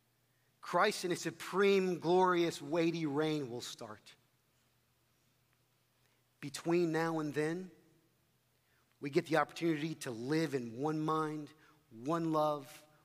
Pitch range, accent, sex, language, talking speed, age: 125-165 Hz, American, male, English, 110 wpm, 40-59